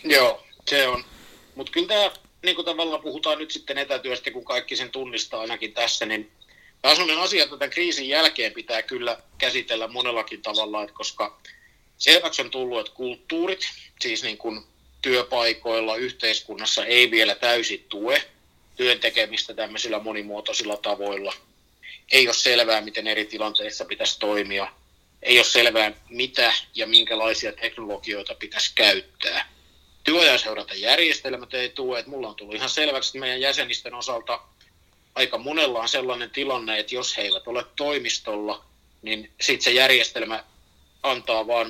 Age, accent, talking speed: 50-69, native, 145 wpm